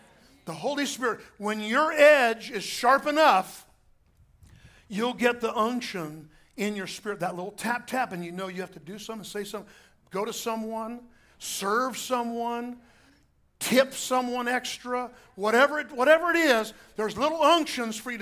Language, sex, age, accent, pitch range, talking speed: English, male, 50-69, American, 195-250 Hz, 155 wpm